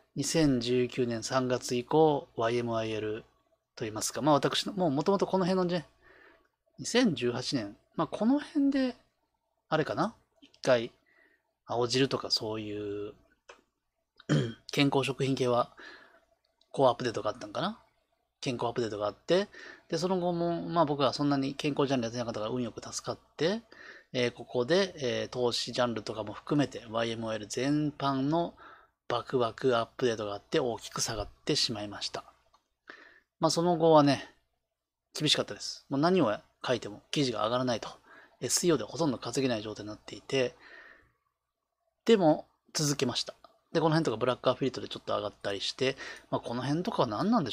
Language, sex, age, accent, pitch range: Japanese, male, 20-39, native, 120-170 Hz